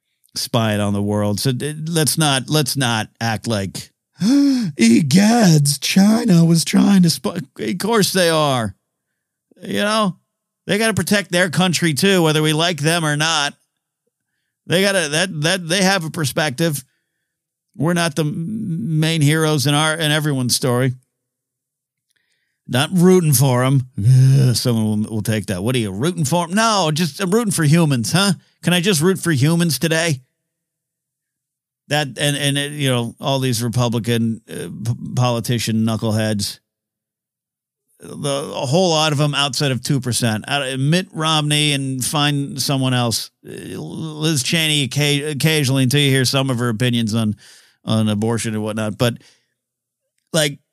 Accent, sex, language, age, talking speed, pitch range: American, male, English, 50-69, 155 wpm, 125-165 Hz